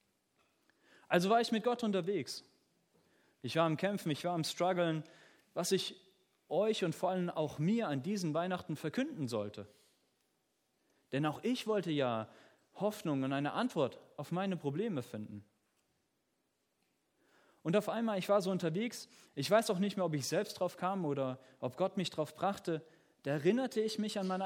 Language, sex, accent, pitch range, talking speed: German, male, German, 145-210 Hz, 170 wpm